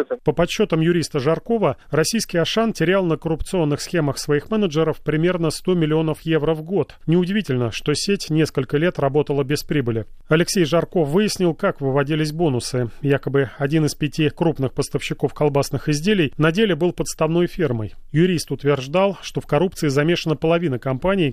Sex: male